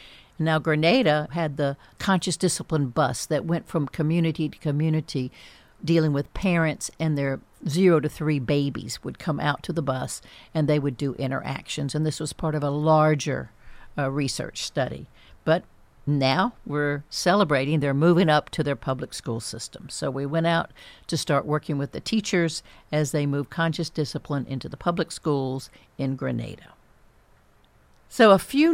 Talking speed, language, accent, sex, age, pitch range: 165 wpm, English, American, female, 60-79, 140-170 Hz